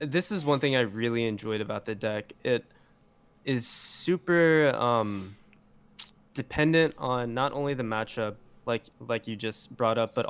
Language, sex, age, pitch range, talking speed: English, male, 10-29, 105-125 Hz, 155 wpm